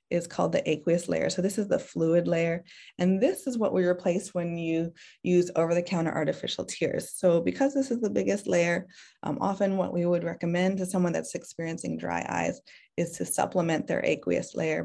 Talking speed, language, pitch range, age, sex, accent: 195 wpm, English, 175-210 Hz, 20-39, female, American